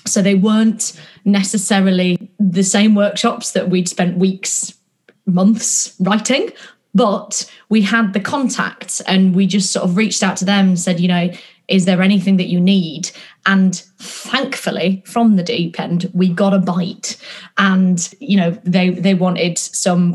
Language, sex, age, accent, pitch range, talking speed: English, female, 20-39, British, 180-200 Hz, 160 wpm